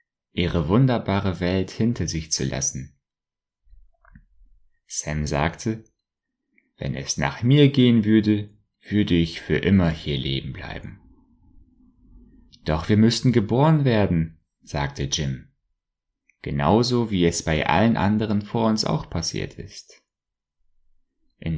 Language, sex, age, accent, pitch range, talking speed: German, male, 30-49, German, 80-115 Hz, 115 wpm